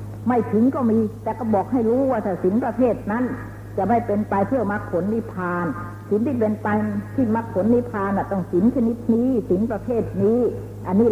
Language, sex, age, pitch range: Thai, female, 60-79, 145-240 Hz